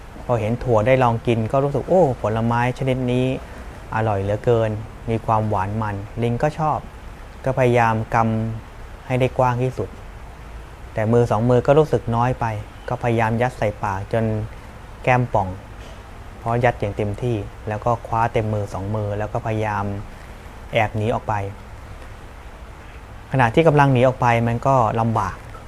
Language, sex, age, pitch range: Thai, male, 20-39, 100-125 Hz